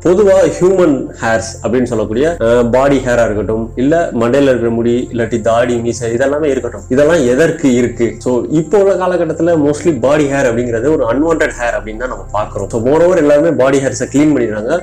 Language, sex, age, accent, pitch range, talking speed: Tamil, male, 30-49, native, 115-165 Hz, 95 wpm